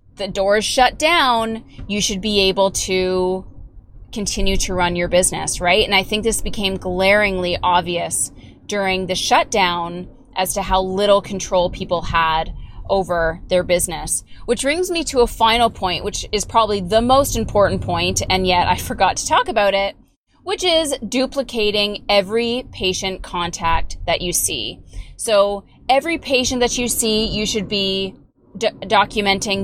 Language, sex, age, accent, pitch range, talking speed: English, female, 20-39, American, 185-240 Hz, 155 wpm